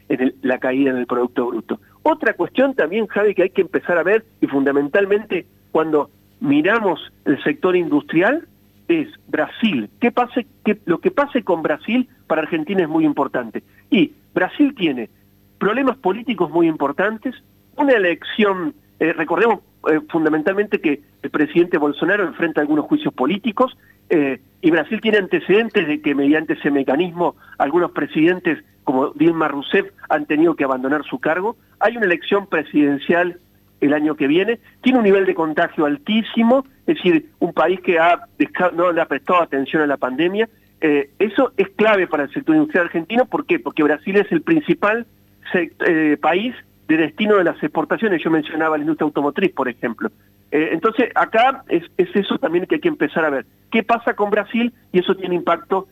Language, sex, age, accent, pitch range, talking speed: Spanish, male, 50-69, Argentinian, 150-230 Hz, 165 wpm